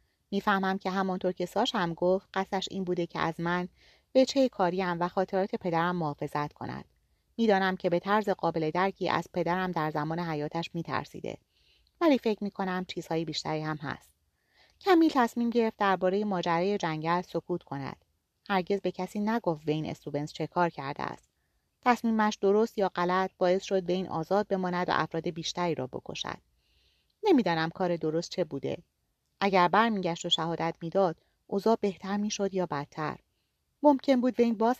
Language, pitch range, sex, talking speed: Persian, 160-195 Hz, female, 165 wpm